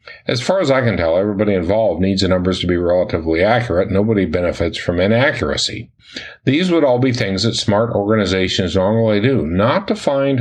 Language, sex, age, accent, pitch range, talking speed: English, male, 50-69, American, 90-115 Hz, 185 wpm